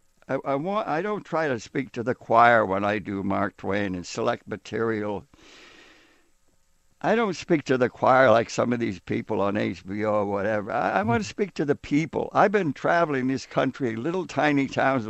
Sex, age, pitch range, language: male, 60-79, 115-160 Hz, English